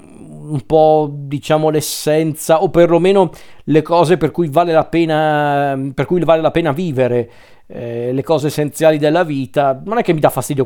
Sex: male